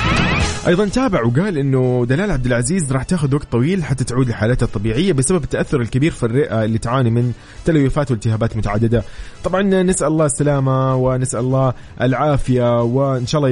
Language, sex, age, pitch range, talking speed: Arabic, male, 20-39, 115-145 Hz, 160 wpm